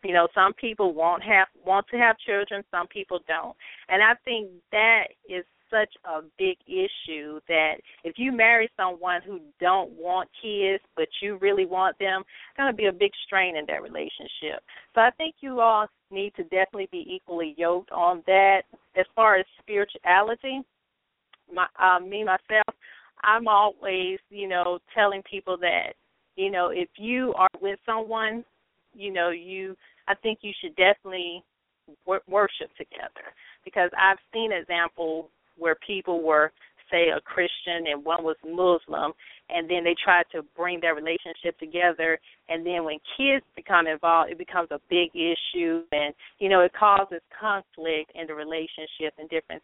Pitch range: 170-205 Hz